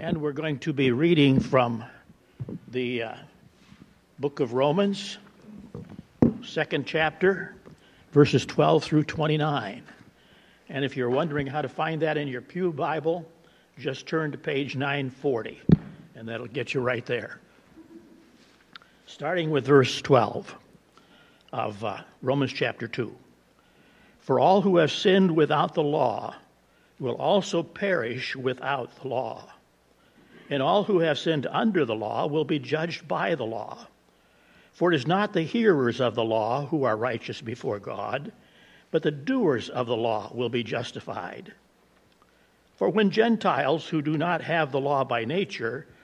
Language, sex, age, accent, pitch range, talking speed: English, male, 60-79, American, 130-175 Hz, 145 wpm